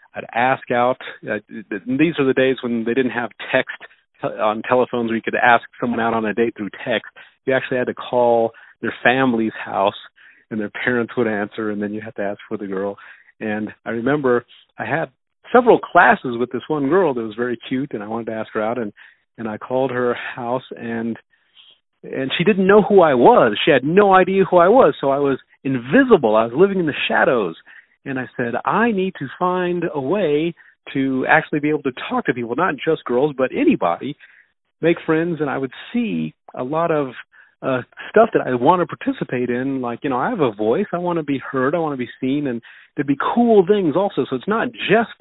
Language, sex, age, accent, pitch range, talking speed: English, male, 50-69, American, 115-160 Hz, 225 wpm